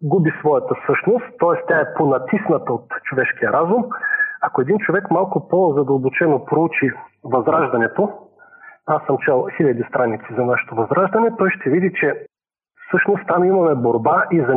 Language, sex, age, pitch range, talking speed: Bulgarian, male, 40-59, 160-235 Hz, 145 wpm